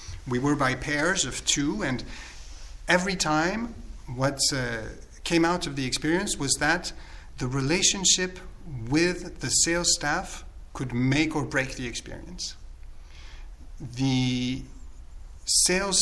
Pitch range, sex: 120-155 Hz, male